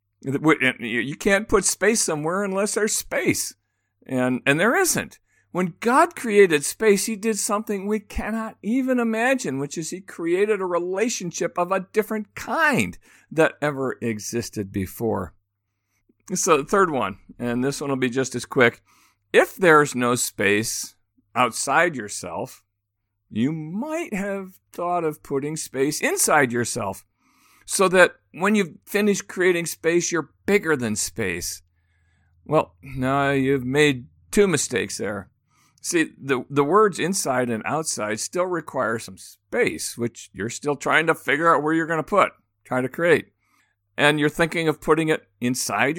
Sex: male